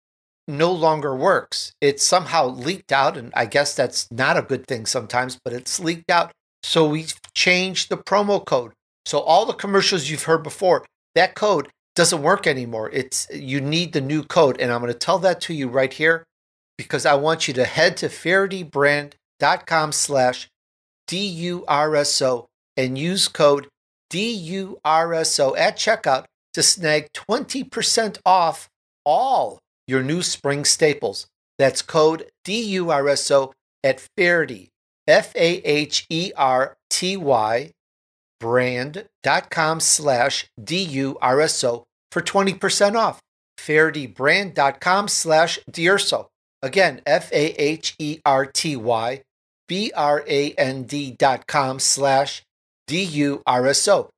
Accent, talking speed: American, 115 wpm